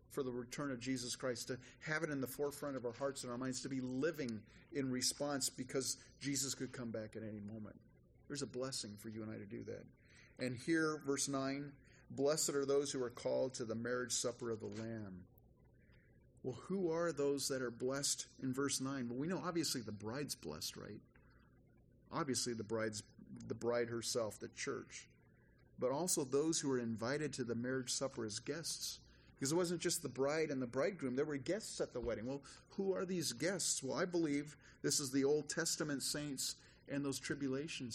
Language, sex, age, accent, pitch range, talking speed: English, male, 40-59, American, 115-145 Hz, 200 wpm